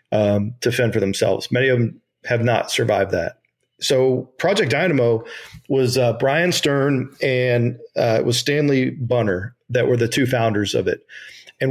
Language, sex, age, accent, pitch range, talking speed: English, male, 40-59, American, 120-135 Hz, 170 wpm